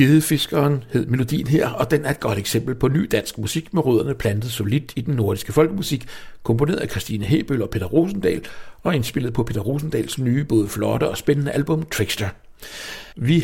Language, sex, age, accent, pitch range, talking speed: English, male, 60-79, Danish, 115-155 Hz, 190 wpm